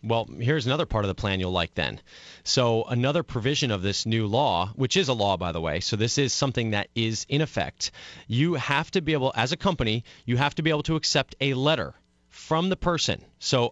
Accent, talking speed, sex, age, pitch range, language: American, 230 wpm, male, 30-49, 110-145 Hz, English